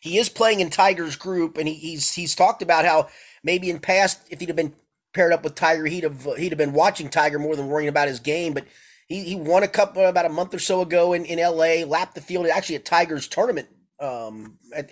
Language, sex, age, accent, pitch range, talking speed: English, male, 30-49, American, 135-170 Hz, 245 wpm